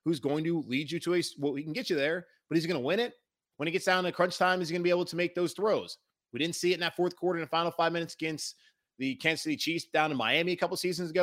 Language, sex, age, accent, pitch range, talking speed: English, male, 30-49, American, 125-175 Hz, 330 wpm